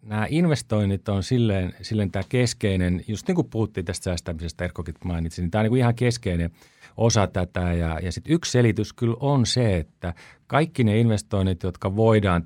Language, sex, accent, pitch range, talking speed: Finnish, male, native, 90-120 Hz, 175 wpm